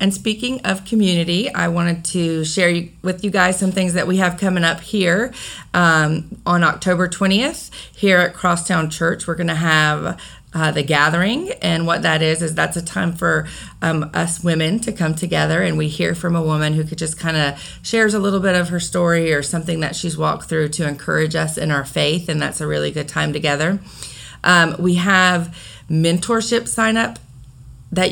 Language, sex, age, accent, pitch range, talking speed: English, female, 30-49, American, 160-190 Hz, 195 wpm